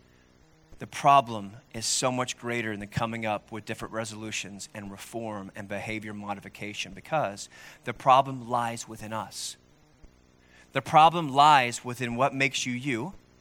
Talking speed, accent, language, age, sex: 145 wpm, American, English, 30-49, male